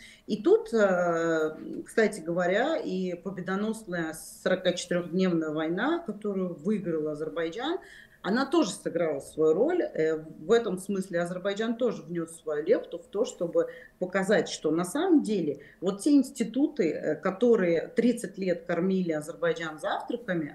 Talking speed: 120 wpm